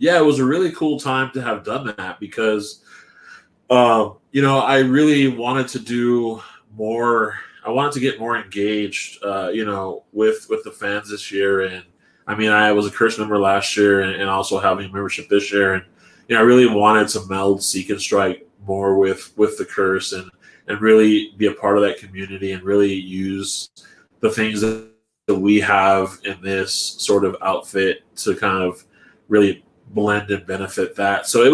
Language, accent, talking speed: English, American, 195 wpm